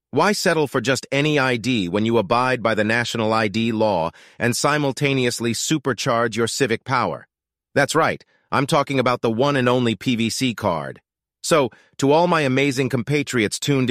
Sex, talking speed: male, 165 wpm